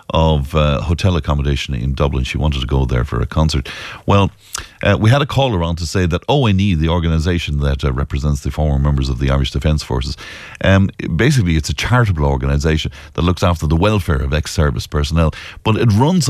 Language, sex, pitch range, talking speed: English, male, 75-105 Hz, 205 wpm